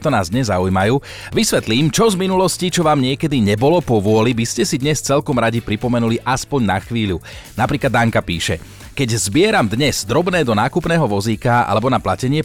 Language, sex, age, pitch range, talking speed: Slovak, male, 40-59, 110-145 Hz, 180 wpm